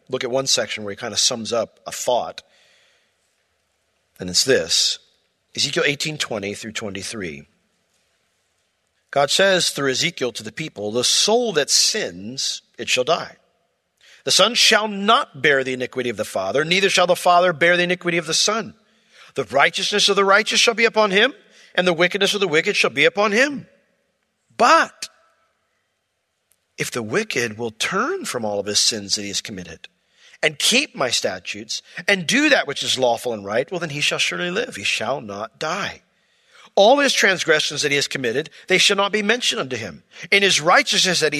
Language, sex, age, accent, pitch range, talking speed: English, male, 50-69, American, 140-220 Hz, 185 wpm